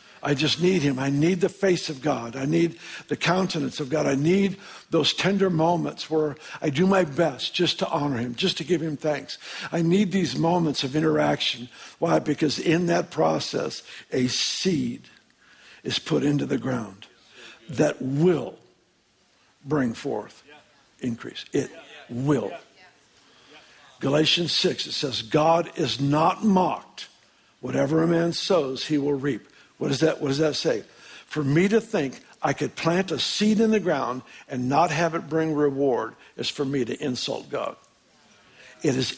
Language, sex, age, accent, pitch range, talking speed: English, male, 60-79, American, 140-175 Hz, 165 wpm